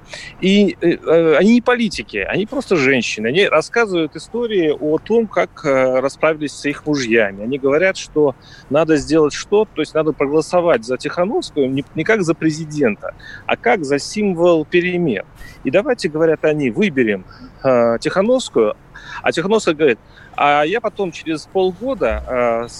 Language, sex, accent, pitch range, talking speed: Russian, male, native, 140-195 Hz, 150 wpm